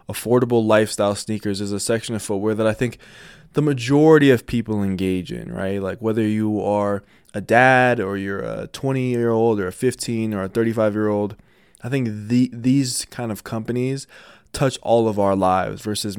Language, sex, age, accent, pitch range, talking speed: English, male, 20-39, American, 100-120 Hz, 175 wpm